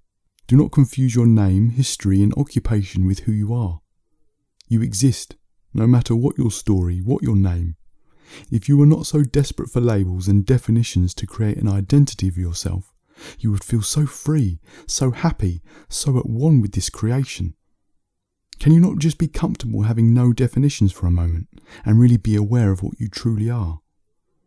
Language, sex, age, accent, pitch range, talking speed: English, male, 30-49, British, 90-120 Hz, 175 wpm